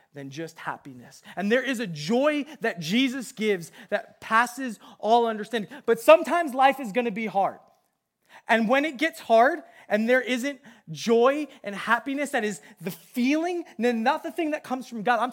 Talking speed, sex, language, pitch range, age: 175 wpm, male, English, 185-245 Hz, 20-39